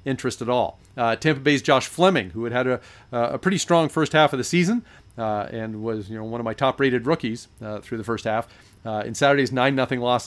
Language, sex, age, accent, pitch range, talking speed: English, male, 40-59, American, 105-130 Hz, 235 wpm